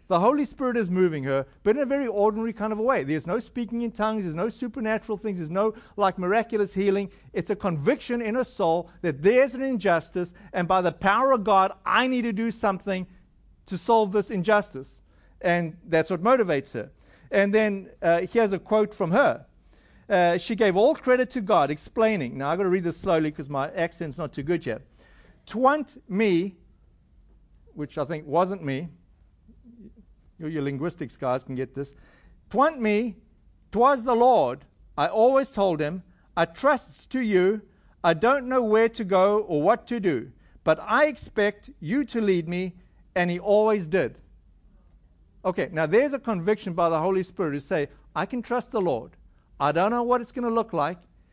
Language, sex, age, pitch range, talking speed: English, male, 50-69, 170-225 Hz, 190 wpm